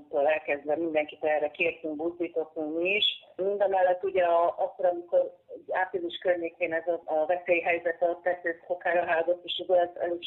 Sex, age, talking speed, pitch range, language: female, 40-59, 145 wpm, 165-180 Hz, Hungarian